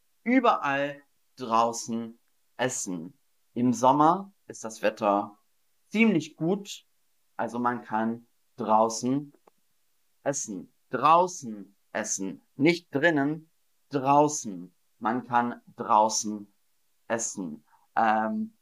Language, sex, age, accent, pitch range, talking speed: German, male, 40-59, German, 115-165 Hz, 80 wpm